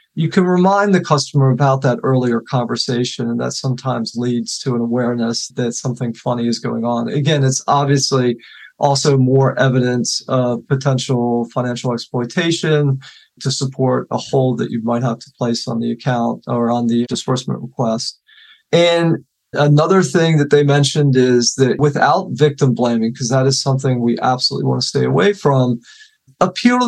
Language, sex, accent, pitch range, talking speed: English, male, American, 125-150 Hz, 165 wpm